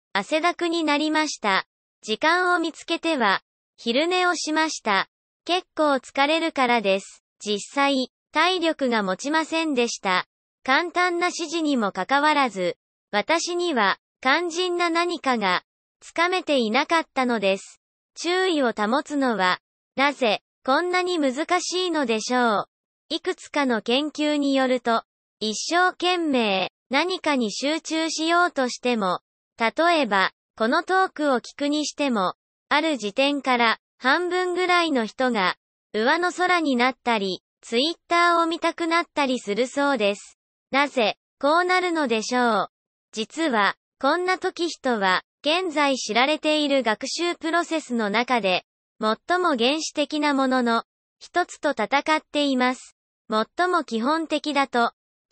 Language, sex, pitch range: Japanese, male, 240-335 Hz